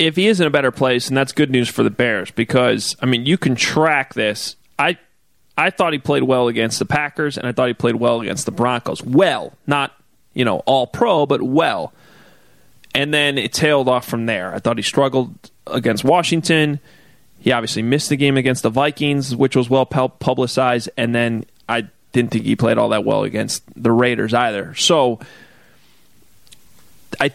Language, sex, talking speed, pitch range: English, male, 195 wpm, 125-160 Hz